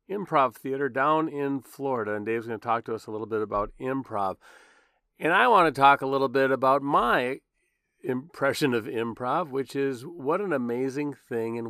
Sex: male